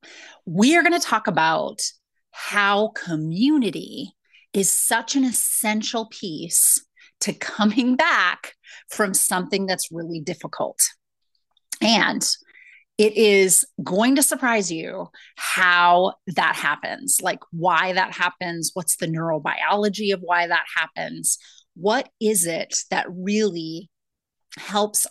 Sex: female